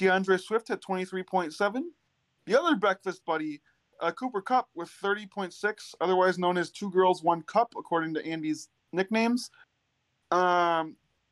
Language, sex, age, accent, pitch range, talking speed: English, male, 20-39, American, 165-200 Hz, 135 wpm